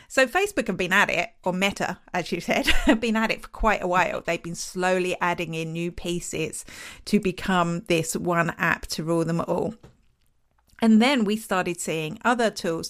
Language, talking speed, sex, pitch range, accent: English, 195 wpm, female, 180-230 Hz, British